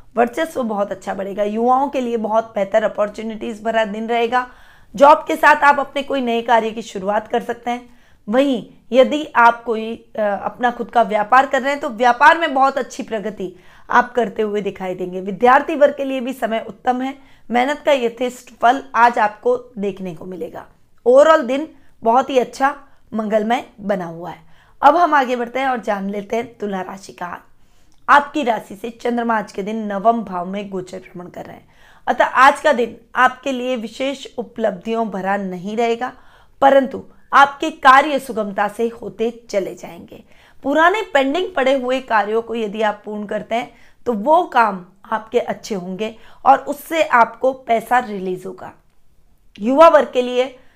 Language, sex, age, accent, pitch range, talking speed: Hindi, female, 20-39, native, 215-265 Hz, 175 wpm